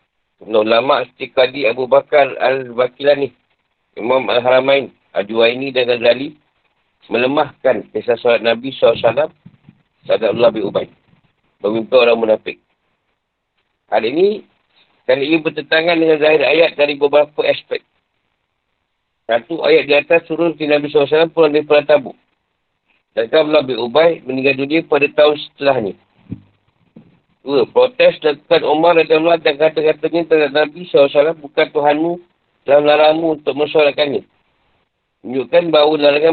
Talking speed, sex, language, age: 120 wpm, male, Malay, 50-69